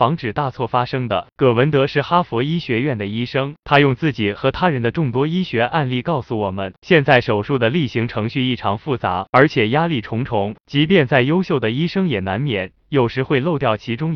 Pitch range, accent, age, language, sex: 115-150 Hz, native, 20-39, Chinese, male